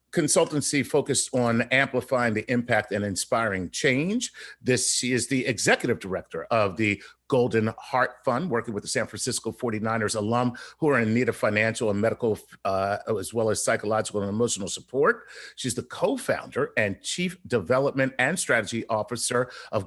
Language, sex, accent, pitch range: English, male, American, 110-140 Hz